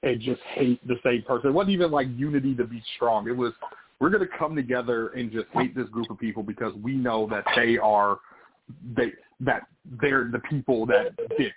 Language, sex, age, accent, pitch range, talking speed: English, male, 30-49, American, 115-160 Hz, 215 wpm